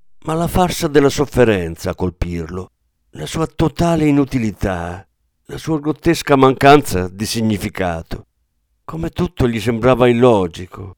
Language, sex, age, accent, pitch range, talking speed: Italian, male, 50-69, native, 95-140 Hz, 120 wpm